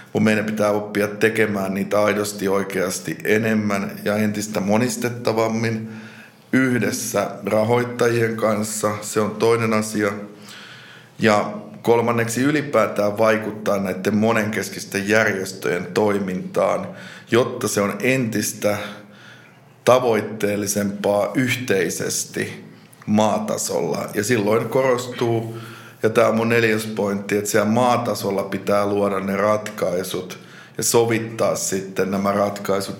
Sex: male